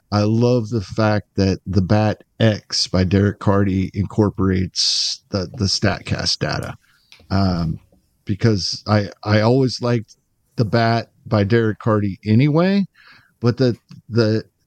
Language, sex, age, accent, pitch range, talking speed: English, male, 50-69, American, 105-120 Hz, 125 wpm